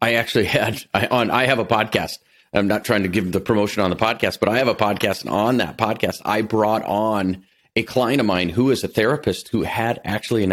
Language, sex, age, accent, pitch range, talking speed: English, male, 40-59, American, 95-120 Hz, 235 wpm